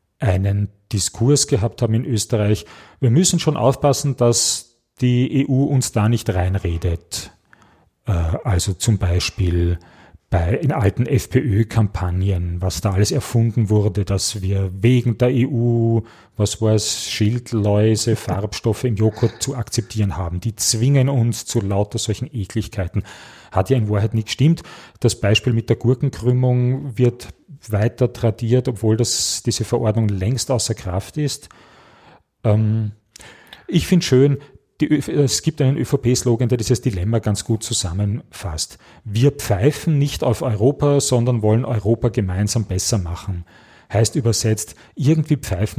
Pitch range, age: 100-125 Hz, 40-59